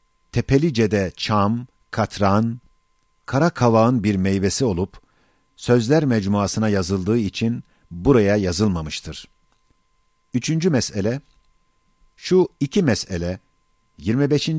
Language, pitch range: Turkish, 100-135 Hz